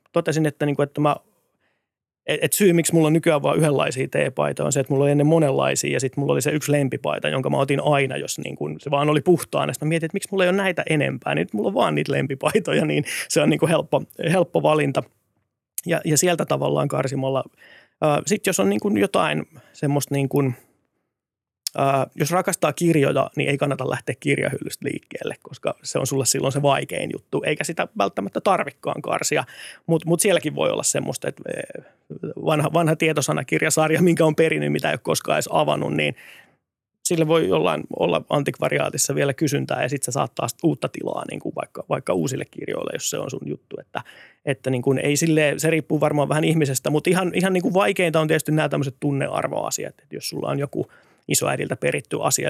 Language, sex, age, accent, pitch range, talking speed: Finnish, male, 30-49, native, 135-160 Hz, 195 wpm